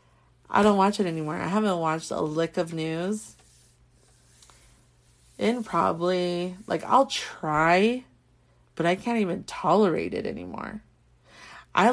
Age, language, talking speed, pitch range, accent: 30-49, English, 125 wpm, 155-195 Hz, American